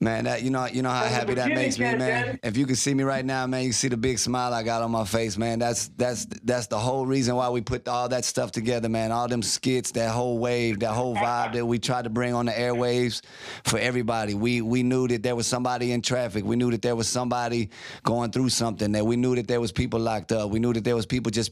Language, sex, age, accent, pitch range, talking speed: English, male, 30-49, American, 105-120 Hz, 275 wpm